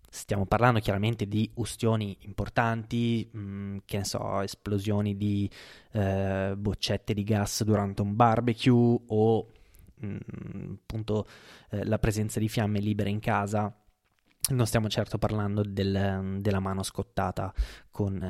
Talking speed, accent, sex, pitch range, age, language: 120 wpm, native, male, 100-120 Hz, 20-39, Italian